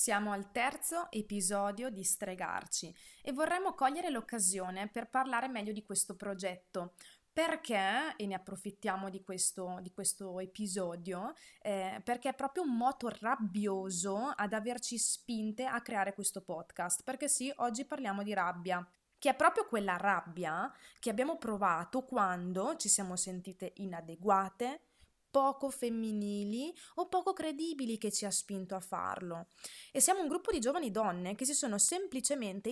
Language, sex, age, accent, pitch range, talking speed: Italian, female, 20-39, native, 195-270 Hz, 145 wpm